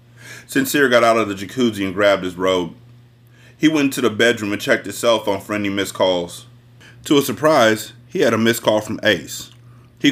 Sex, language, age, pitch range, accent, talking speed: male, English, 30-49, 110-140 Hz, American, 210 wpm